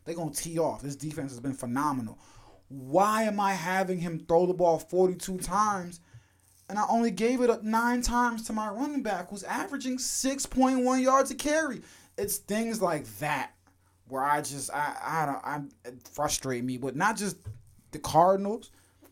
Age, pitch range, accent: 20-39, 110-170 Hz, American